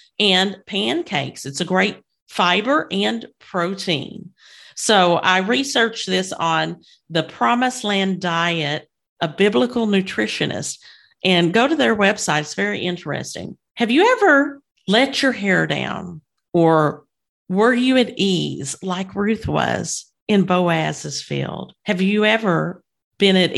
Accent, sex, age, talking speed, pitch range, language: American, female, 50-69, 130 wpm, 165-225 Hz, English